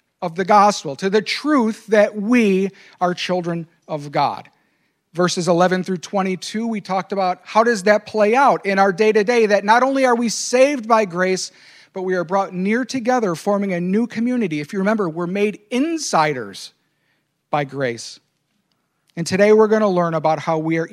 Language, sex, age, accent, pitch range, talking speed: English, male, 50-69, American, 155-210 Hz, 180 wpm